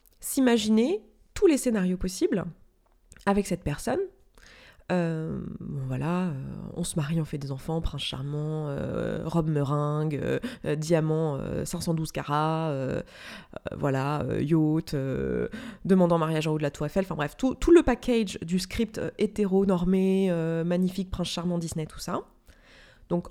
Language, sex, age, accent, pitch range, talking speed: French, female, 20-39, French, 165-220 Hz, 150 wpm